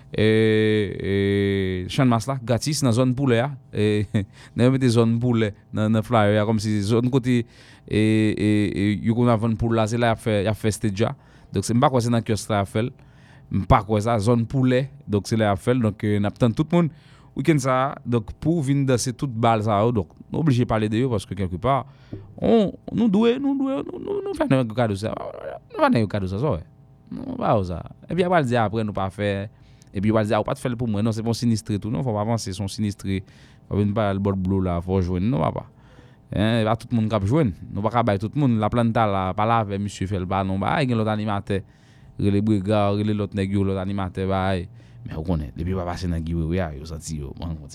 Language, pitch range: English, 100-125 Hz